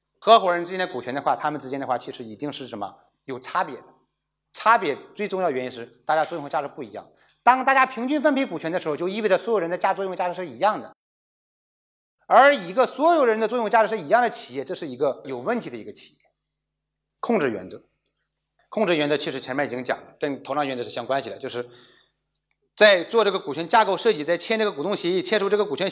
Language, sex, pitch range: Chinese, male, 145-220 Hz